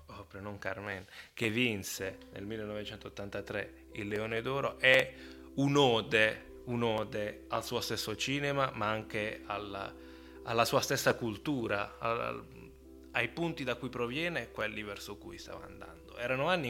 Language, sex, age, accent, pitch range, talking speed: Italian, male, 20-39, native, 100-125 Hz, 140 wpm